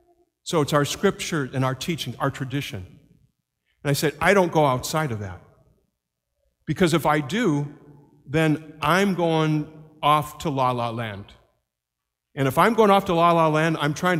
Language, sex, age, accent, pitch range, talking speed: English, male, 50-69, American, 115-160 Hz, 175 wpm